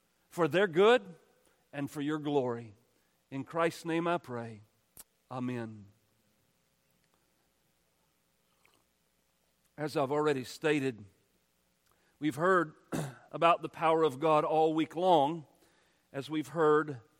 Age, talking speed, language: 40-59, 105 wpm, English